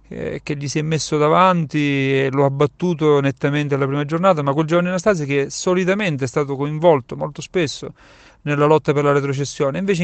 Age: 40-59